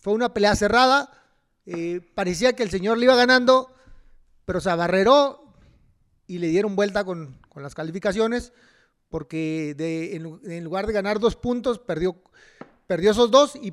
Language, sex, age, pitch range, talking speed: Spanish, male, 40-59, 185-255 Hz, 155 wpm